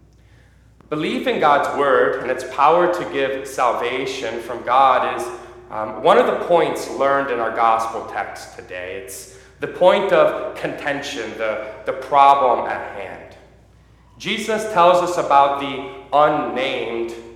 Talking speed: 140 wpm